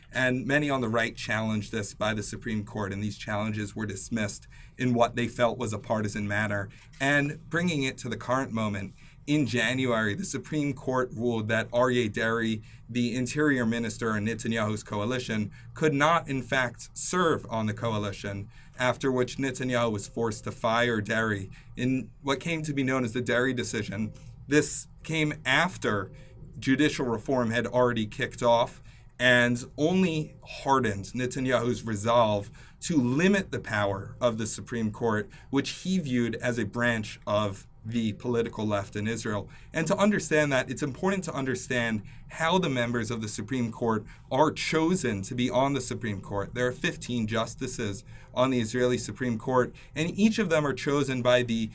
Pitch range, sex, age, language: 110-135 Hz, male, 40-59, English